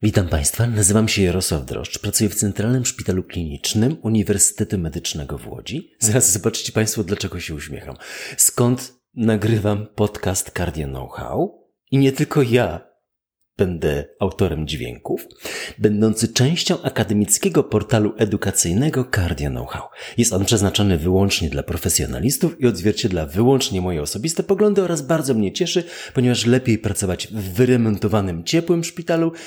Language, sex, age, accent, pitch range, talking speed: Polish, male, 40-59, native, 90-125 Hz, 130 wpm